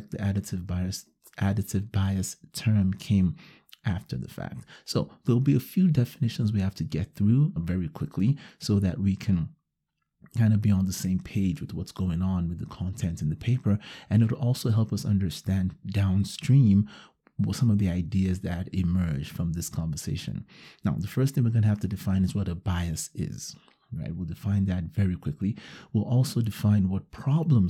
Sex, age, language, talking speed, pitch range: male, 30-49, English, 190 wpm, 95-115 Hz